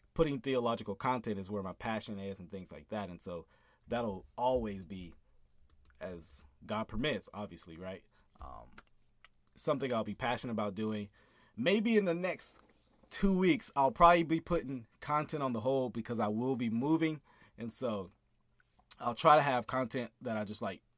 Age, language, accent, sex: 30-49, English, American, male